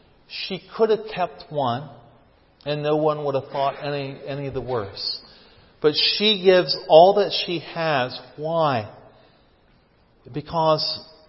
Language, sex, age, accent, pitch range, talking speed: English, male, 40-59, American, 125-155 Hz, 130 wpm